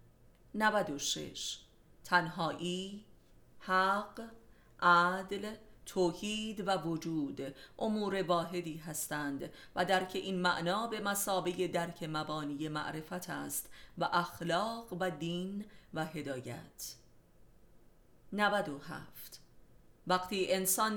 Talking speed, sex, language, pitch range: 85 wpm, female, Persian, 155-195 Hz